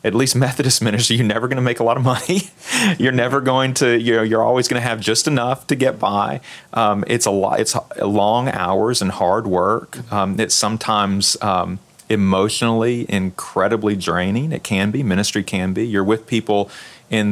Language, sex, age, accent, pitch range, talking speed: English, male, 40-59, American, 100-120 Hz, 200 wpm